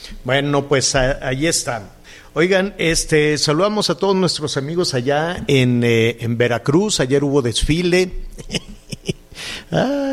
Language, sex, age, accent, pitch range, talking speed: Spanish, male, 50-69, Mexican, 105-140 Hz, 120 wpm